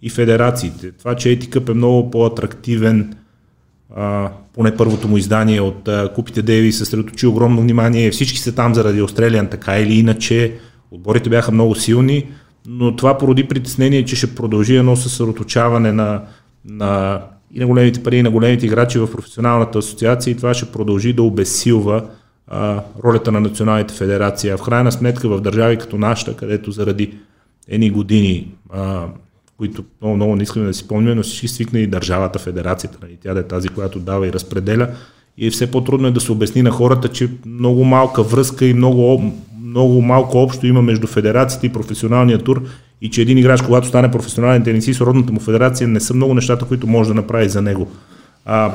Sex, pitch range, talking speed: male, 105-125 Hz, 185 wpm